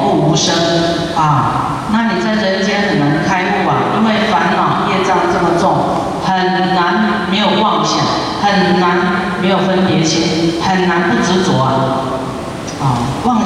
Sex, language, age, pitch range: female, Chinese, 40-59, 165-195 Hz